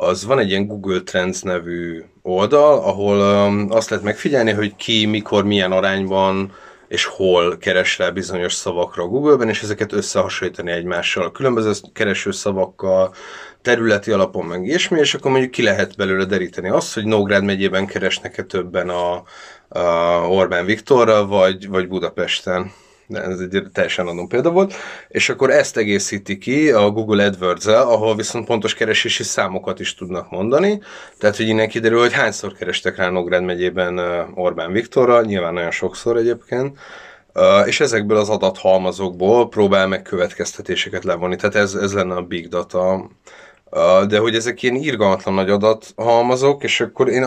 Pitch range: 95-115 Hz